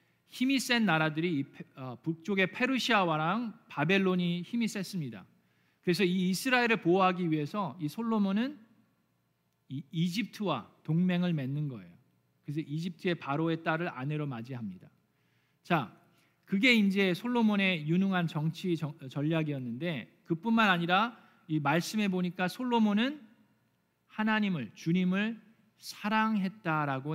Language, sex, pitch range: Korean, male, 155-210 Hz